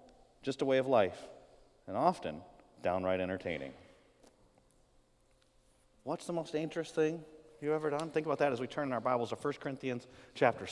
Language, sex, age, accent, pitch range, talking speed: English, male, 30-49, American, 135-165 Hz, 160 wpm